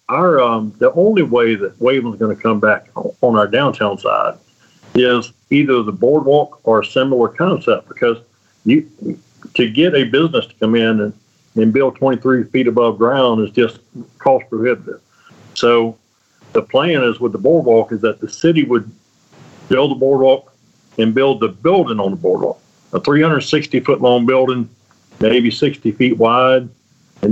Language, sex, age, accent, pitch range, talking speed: English, male, 50-69, American, 110-130 Hz, 165 wpm